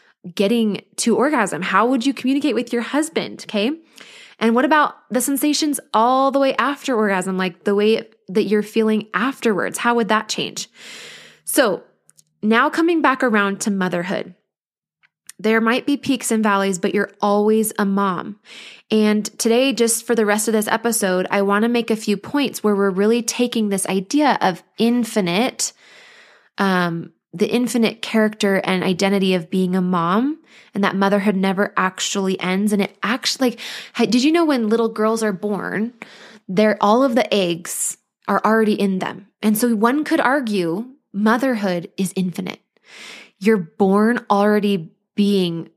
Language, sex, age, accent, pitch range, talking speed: English, female, 20-39, American, 195-235 Hz, 160 wpm